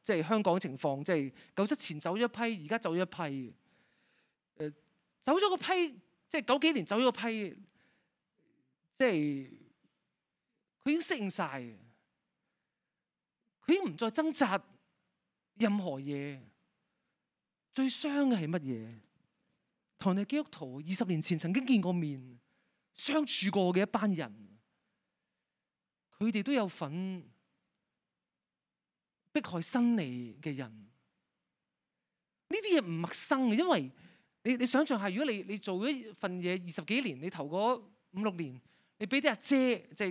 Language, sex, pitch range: Chinese, male, 170-265 Hz